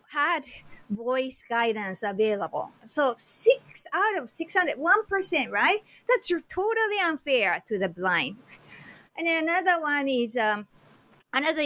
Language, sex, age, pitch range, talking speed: English, female, 30-49, 190-270 Hz, 130 wpm